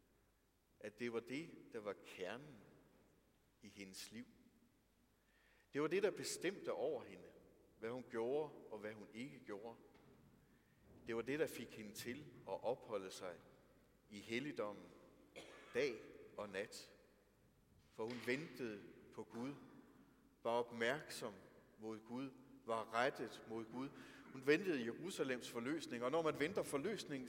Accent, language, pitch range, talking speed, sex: native, Danish, 115-170 Hz, 135 wpm, male